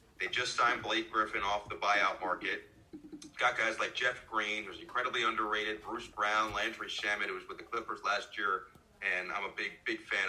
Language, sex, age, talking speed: English, male, 30-49, 200 wpm